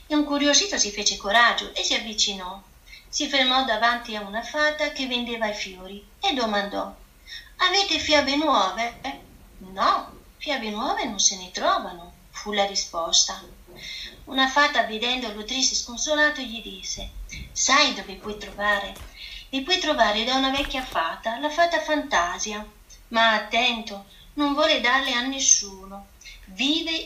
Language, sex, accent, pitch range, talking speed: Italian, female, native, 205-290 Hz, 140 wpm